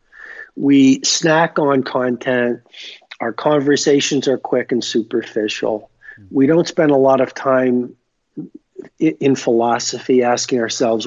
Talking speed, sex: 115 wpm, male